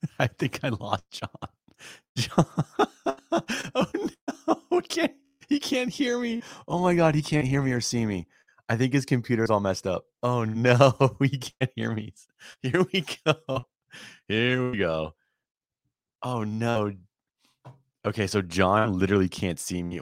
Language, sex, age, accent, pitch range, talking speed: English, male, 30-49, American, 90-140 Hz, 155 wpm